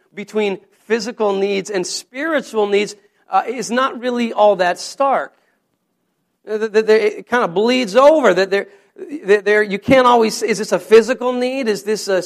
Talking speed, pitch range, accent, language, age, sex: 170 wpm, 180-225 Hz, American, English, 40-59, male